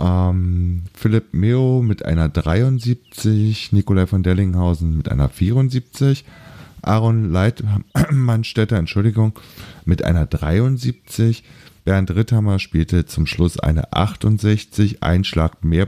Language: German